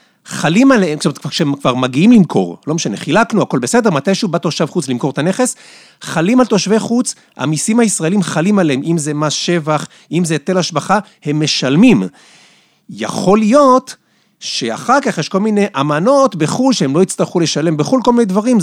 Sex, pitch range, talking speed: male, 150-200 Hz, 175 wpm